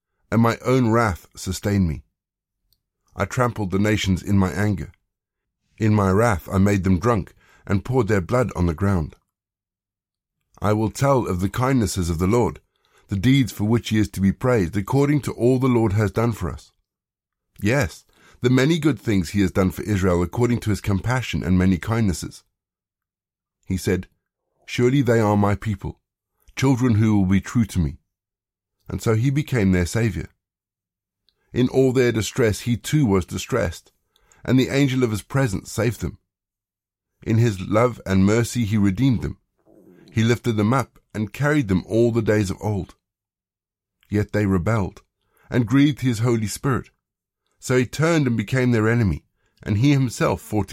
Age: 50-69